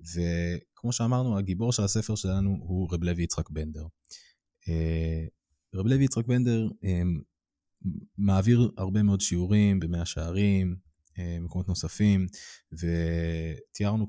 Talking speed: 100 wpm